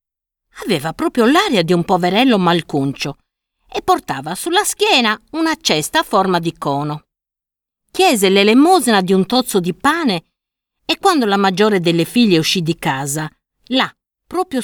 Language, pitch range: Italian, 160-275 Hz